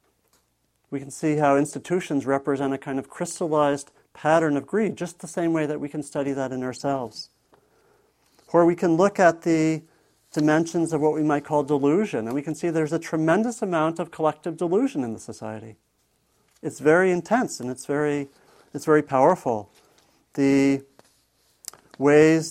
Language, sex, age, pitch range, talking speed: English, male, 50-69, 135-160 Hz, 165 wpm